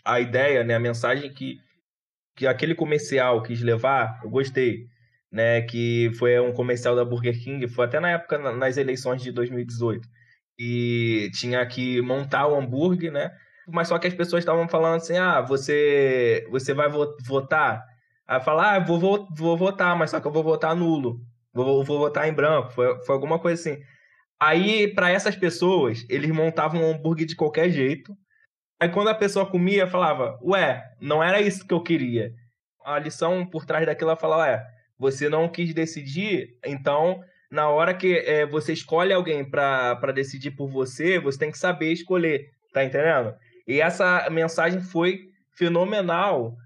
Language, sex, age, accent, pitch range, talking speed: Portuguese, male, 20-39, Brazilian, 125-170 Hz, 170 wpm